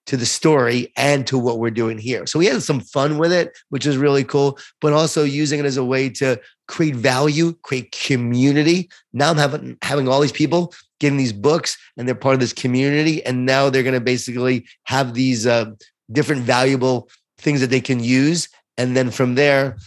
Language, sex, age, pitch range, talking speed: English, male, 30-49, 120-150 Hz, 205 wpm